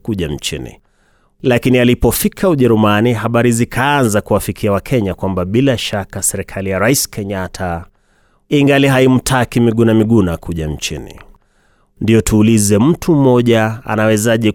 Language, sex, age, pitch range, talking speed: Swahili, male, 30-49, 100-125 Hz, 110 wpm